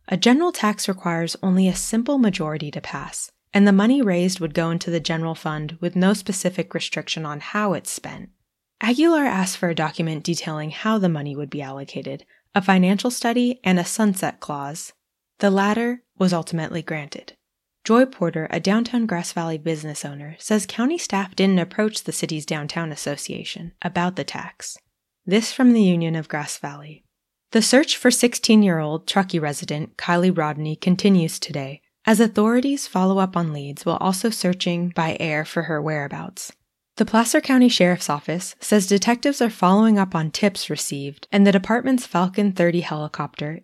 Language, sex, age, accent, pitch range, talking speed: English, female, 20-39, American, 155-210 Hz, 170 wpm